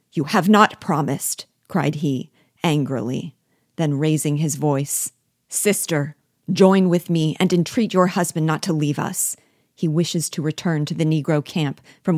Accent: American